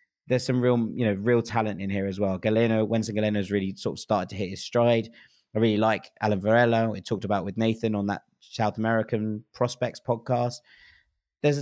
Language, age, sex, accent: English, 20-39, male, British